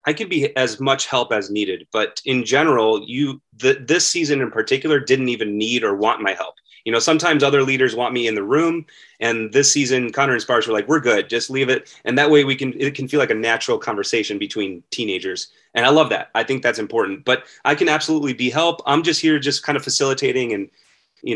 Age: 30-49